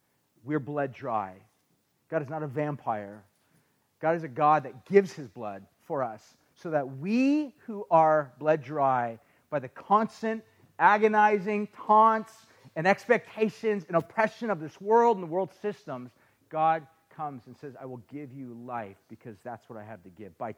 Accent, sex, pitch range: American, male, 120-155 Hz